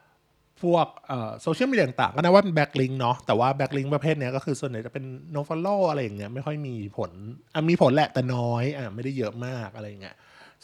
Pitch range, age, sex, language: 120-160 Hz, 20-39, male, Thai